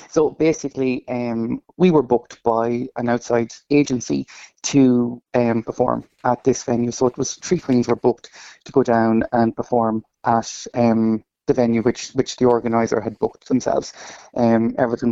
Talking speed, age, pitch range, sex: 165 wpm, 30-49, 115-125 Hz, male